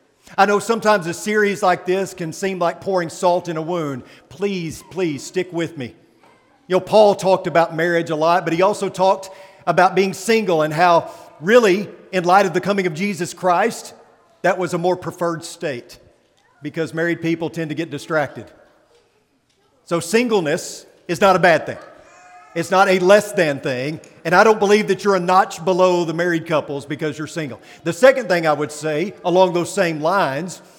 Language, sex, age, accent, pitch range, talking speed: English, male, 50-69, American, 165-195 Hz, 190 wpm